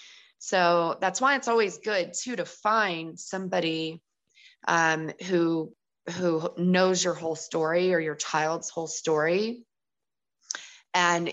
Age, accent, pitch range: 20-39, American, 155-180 Hz